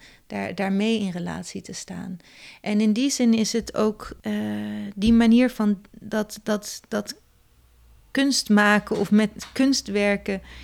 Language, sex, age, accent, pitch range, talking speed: Dutch, female, 30-49, Dutch, 190-215 Hz, 140 wpm